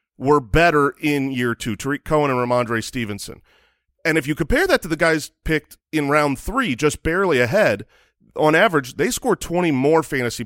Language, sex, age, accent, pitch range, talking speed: English, male, 30-49, American, 140-175 Hz, 185 wpm